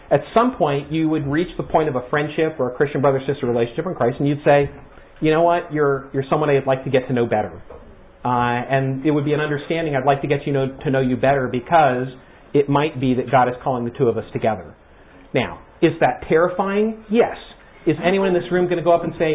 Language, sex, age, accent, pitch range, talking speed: English, male, 40-59, American, 140-200 Hz, 250 wpm